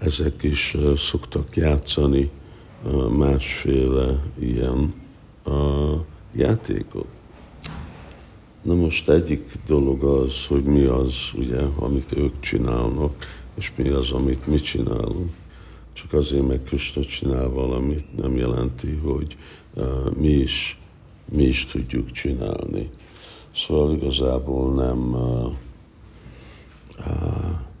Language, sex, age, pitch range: Hungarian, male, 60-79, 65-75 Hz